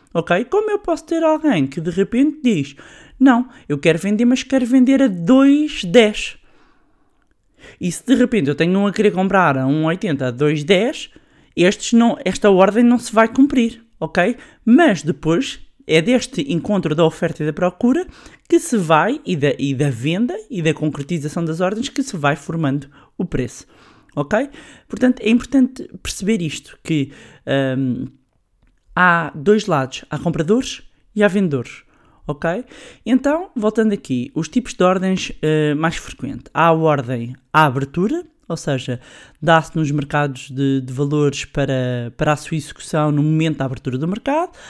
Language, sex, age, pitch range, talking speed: Portuguese, male, 20-39, 150-235 Hz, 160 wpm